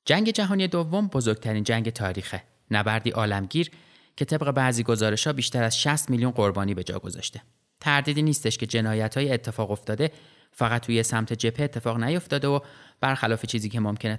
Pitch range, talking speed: 105-130 Hz, 160 wpm